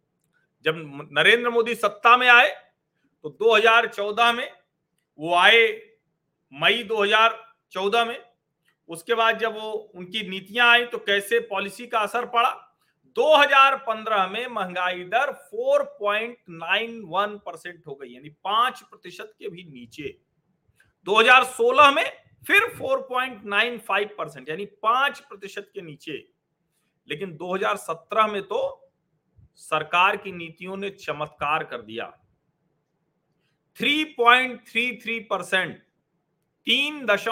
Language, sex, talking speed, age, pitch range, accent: Hindi, male, 100 wpm, 40-59, 175-240 Hz, native